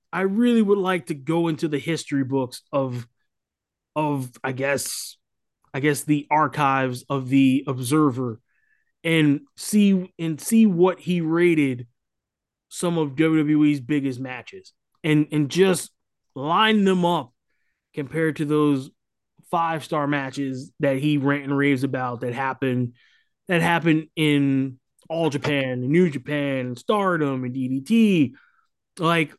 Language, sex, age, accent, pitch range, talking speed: English, male, 20-39, American, 140-175 Hz, 135 wpm